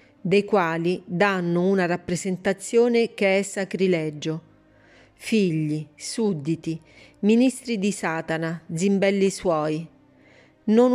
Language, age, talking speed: Italian, 40-59, 90 wpm